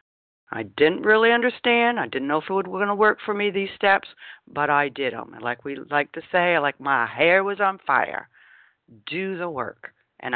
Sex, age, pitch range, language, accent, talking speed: female, 60-79, 145-200 Hz, English, American, 210 wpm